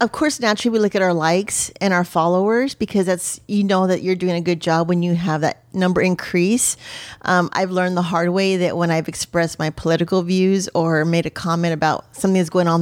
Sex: female